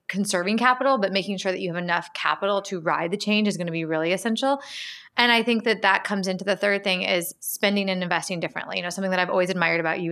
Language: English